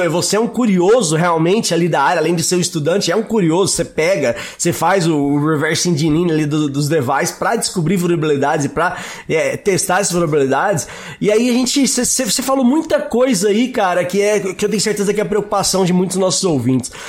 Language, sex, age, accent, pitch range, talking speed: Portuguese, male, 20-39, Brazilian, 175-225 Hz, 205 wpm